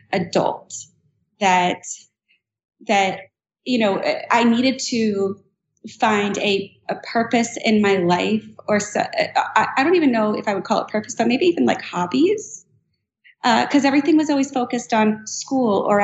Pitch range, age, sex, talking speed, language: 185-220 Hz, 30-49, female, 155 wpm, English